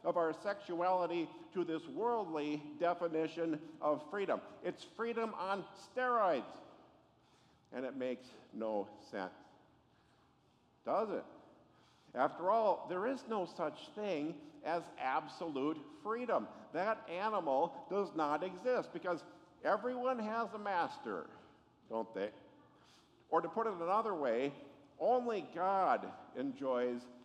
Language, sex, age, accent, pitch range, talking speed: English, male, 50-69, American, 160-225 Hz, 110 wpm